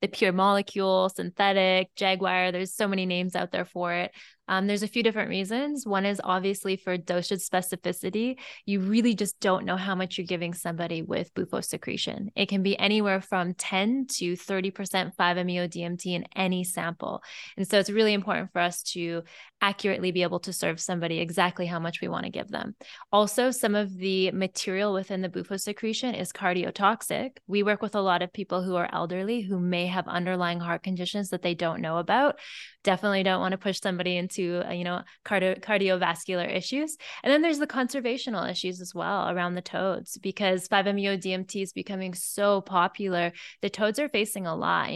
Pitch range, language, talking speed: 180-205 Hz, English, 190 wpm